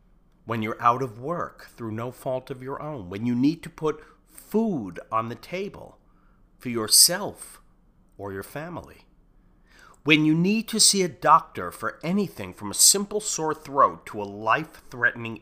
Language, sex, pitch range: English, male, 115-170 Hz